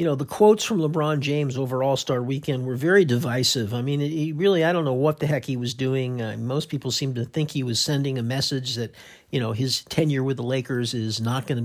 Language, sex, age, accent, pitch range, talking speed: English, male, 50-69, American, 130-185 Hz, 245 wpm